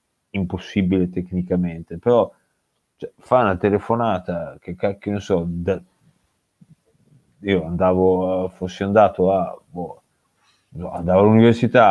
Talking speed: 105 wpm